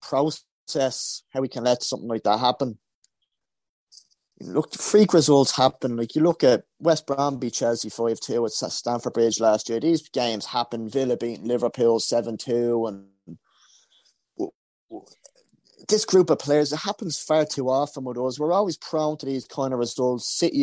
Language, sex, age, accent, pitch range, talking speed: English, male, 30-49, British, 120-155 Hz, 170 wpm